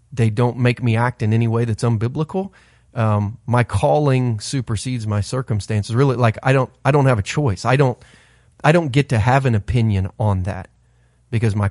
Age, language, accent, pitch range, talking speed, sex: 30-49, English, American, 105-125 Hz, 195 wpm, male